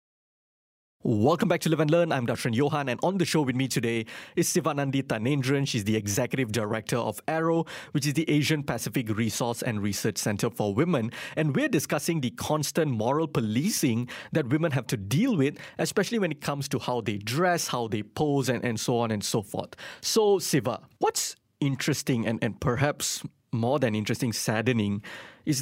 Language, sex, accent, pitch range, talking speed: English, male, Malaysian, 115-155 Hz, 185 wpm